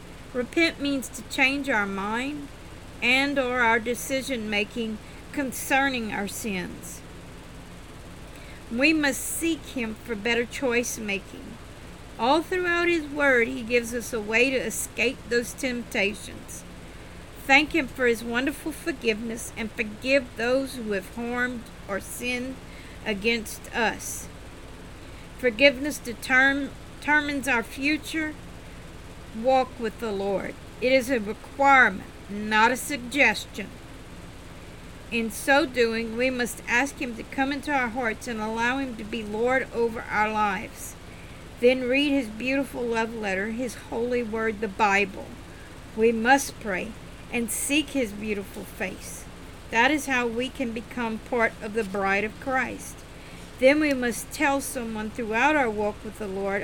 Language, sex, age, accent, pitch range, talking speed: English, female, 50-69, American, 225-270 Hz, 135 wpm